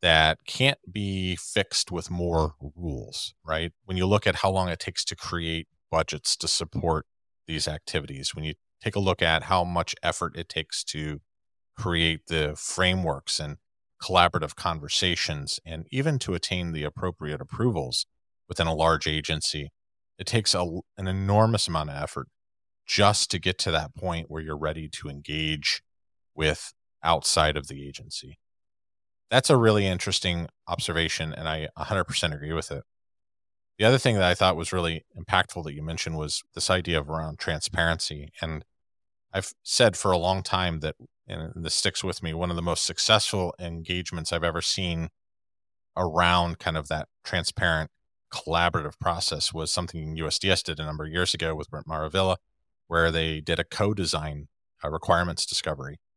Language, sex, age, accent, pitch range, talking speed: English, male, 30-49, American, 80-95 Hz, 160 wpm